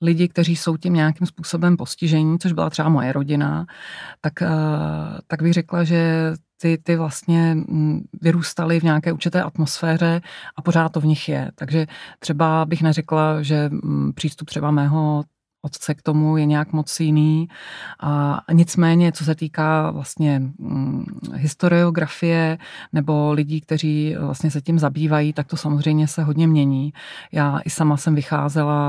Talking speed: 145 wpm